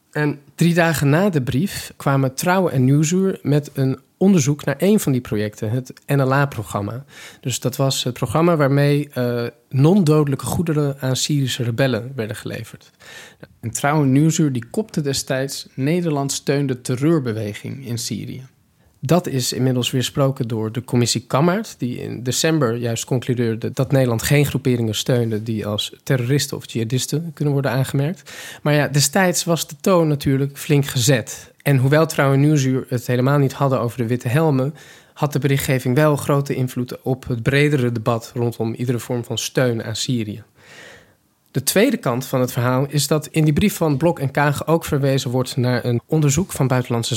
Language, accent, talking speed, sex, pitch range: Dutch, Dutch, 170 wpm, male, 125-150 Hz